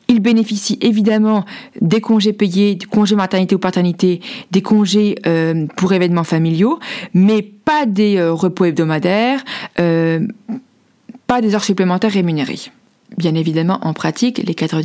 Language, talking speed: French, 135 wpm